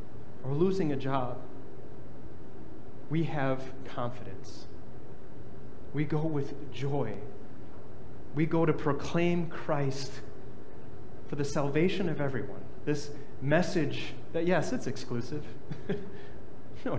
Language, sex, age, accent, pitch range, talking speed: English, male, 30-49, American, 125-155 Hz, 100 wpm